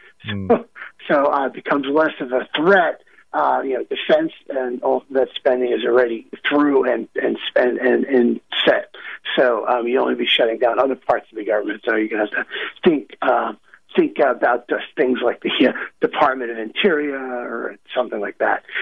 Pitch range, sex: 130-200 Hz, male